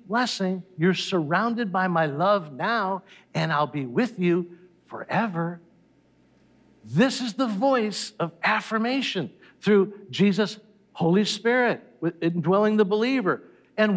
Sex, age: male, 60-79